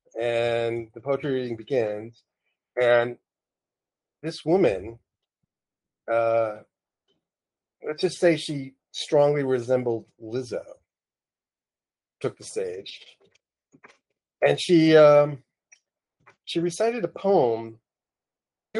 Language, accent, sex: English, American, male